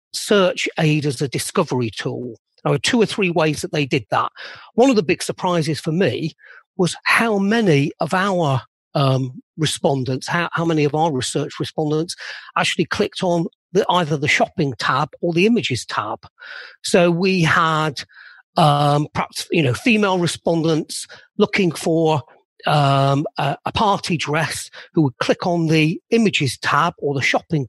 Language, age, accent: English, 40-59, British